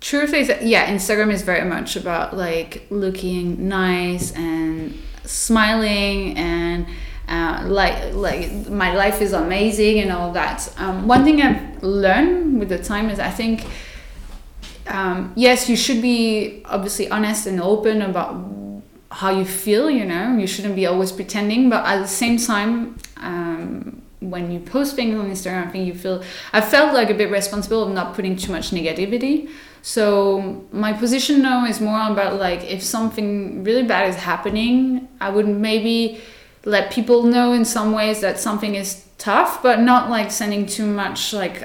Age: 20-39